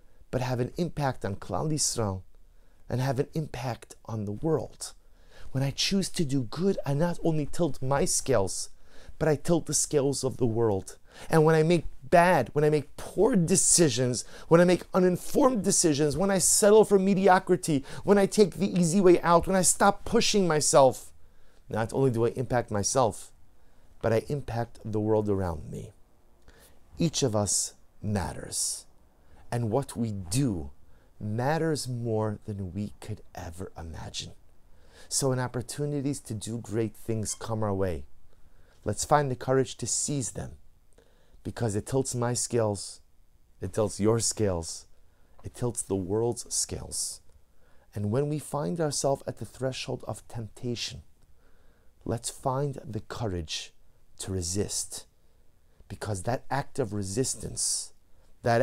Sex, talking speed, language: male, 150 wpm, English